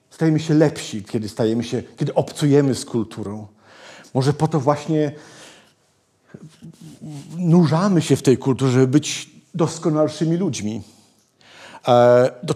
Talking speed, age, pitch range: 115 wpm, 50-69, 125-165 Hz